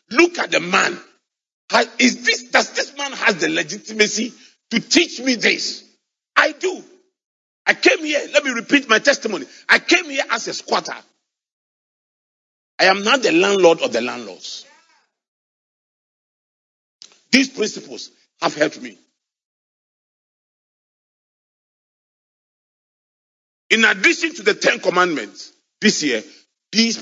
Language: English